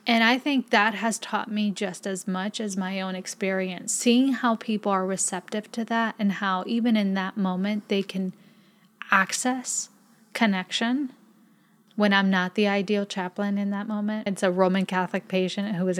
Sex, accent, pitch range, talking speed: female, American, 180-210 Hz, 175 wpm